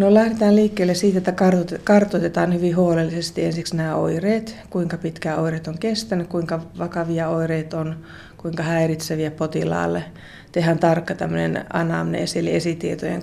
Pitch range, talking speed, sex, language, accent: 155-175 Hz, 130 wpm, female, Finnish, native